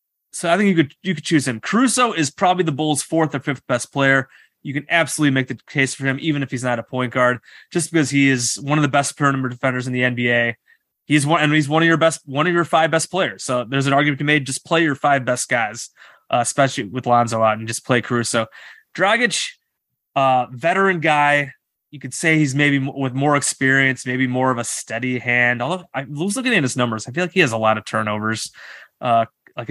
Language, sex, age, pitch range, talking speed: English, male, 20-39, 125-160 Hz, 240 wpm